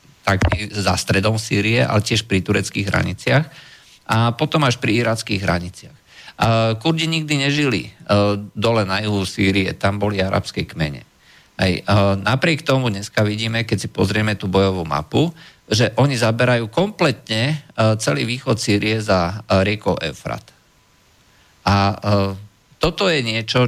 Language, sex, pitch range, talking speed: Slovak, male, 100-120 Hz, 130 wpm